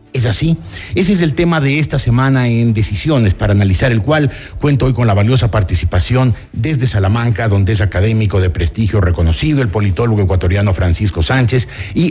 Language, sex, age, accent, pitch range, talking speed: Spanish, male, 50-69, Mexican, 100-130 Hz, 175 wpm